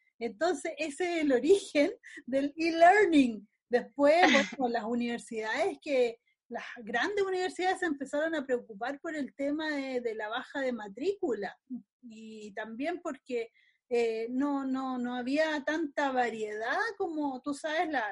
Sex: female